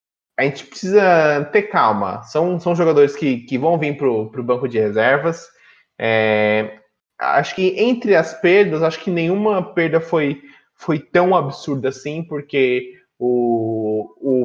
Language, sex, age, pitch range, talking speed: Portuguese, male, 20-39, 120-165 Hz, 140 wpm